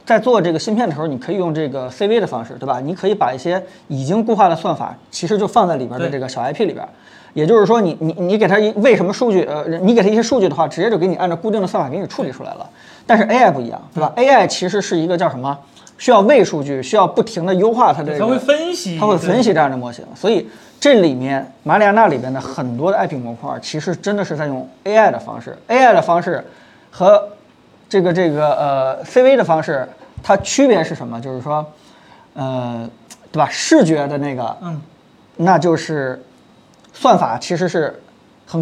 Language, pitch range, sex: Chinese, 150-215 Hz, male